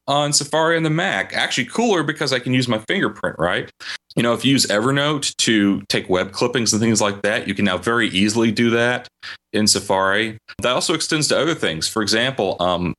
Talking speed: 210 wpm